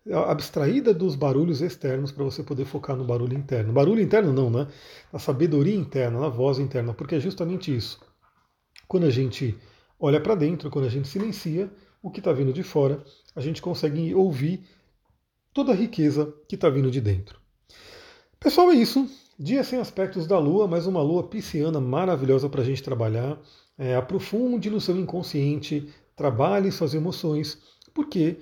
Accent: Brazilian